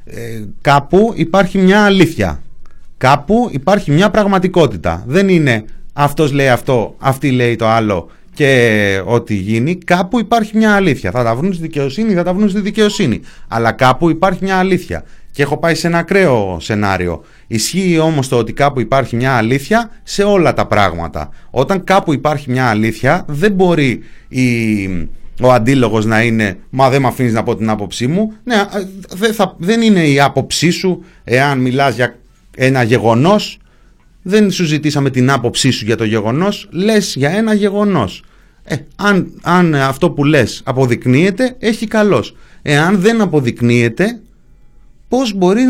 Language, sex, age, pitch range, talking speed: Greek, male, 30-49, 120-205 Hz, 155 wpm